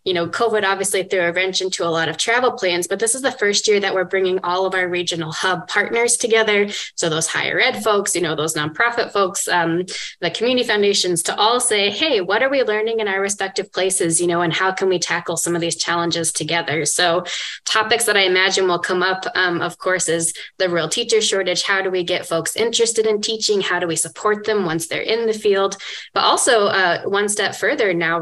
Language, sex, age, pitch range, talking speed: English, female, 20-39, 170-210 Hz, 230 wpm